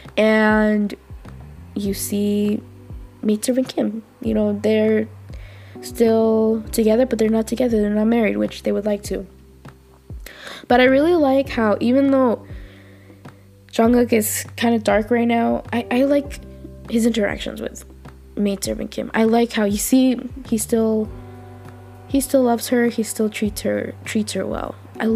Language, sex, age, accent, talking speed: English, female, 20-39, Canadian, 155 wpm